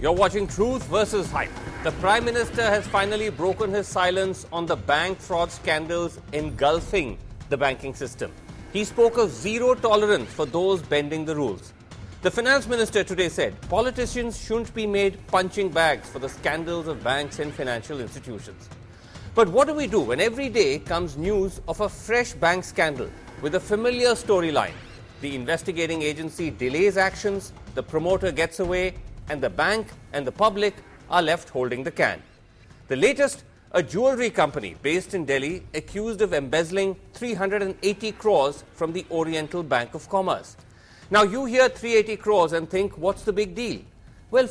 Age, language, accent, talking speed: 40-59, English, Indian, 165 wpm